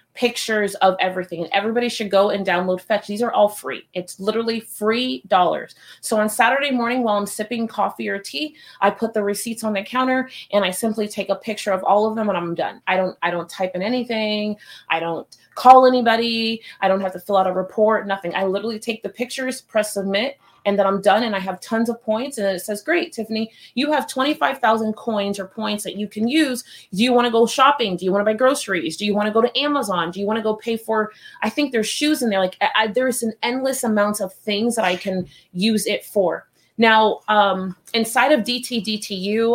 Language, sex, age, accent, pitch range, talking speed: English, female, 30-49, American, 195-230 Hz, 220 wpm